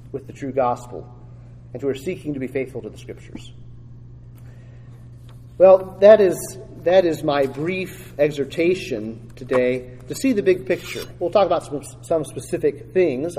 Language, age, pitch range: English, 40-59, 120-155 Hz